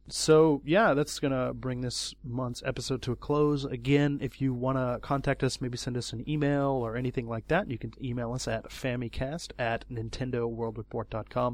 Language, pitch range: English, 115-135 Hz